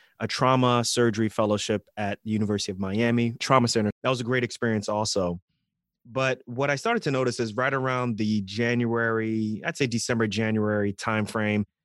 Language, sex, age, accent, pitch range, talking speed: English, male, 20-39, American, 105-125 Hz, 165 wpm